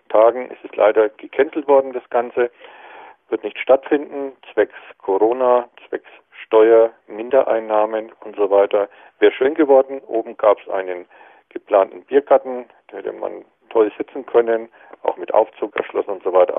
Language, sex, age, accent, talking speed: German, male, 50-69, German, 150 wpm